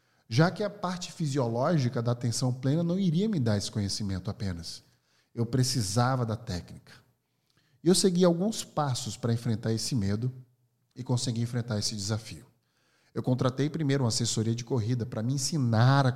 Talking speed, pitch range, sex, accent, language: 165 wpm, 115-145 Hz, male, Brazilian, Portuguese